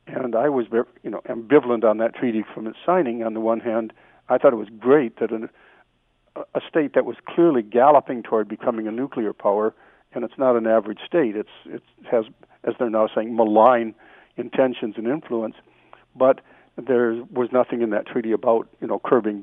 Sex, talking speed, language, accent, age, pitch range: male, 195 wpm, English, American, 50-69, 110-135 Hz